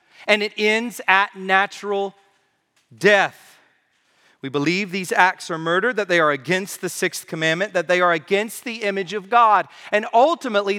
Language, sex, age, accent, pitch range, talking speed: English, male, 40-59, American, 150-195 Hz, 160 wpm